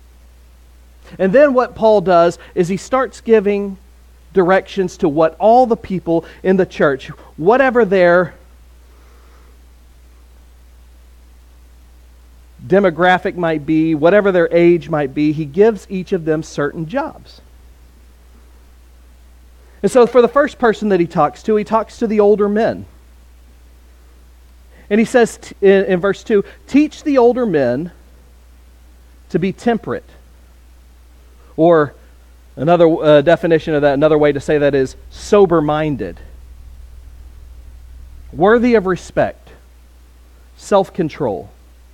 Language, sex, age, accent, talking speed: English, male, 40-59, American, 115 wpm